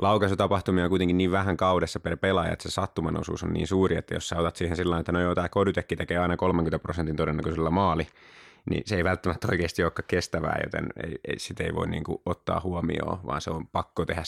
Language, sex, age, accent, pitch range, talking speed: Finnish, male, 30-49, native, 80-90 Hz, 215 wpm